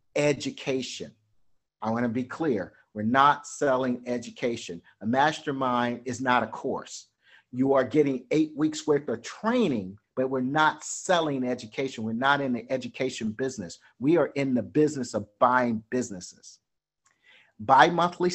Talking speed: 145 wpm